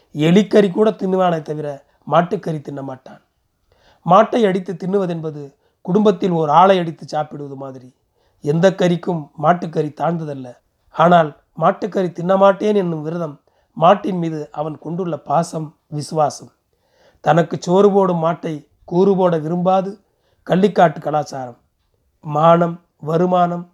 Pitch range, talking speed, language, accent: 150-185 Hz, 100 wpm, Tamil, native